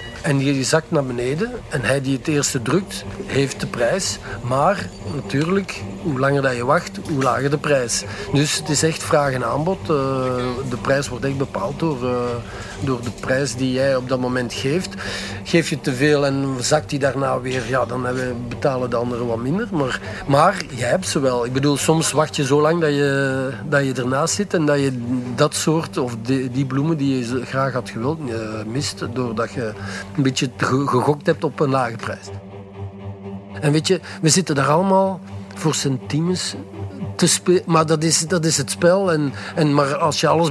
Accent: Dutch